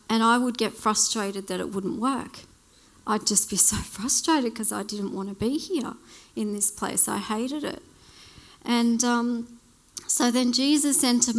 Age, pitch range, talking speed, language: 40-59, 215-250 Hz, 175 wpm, English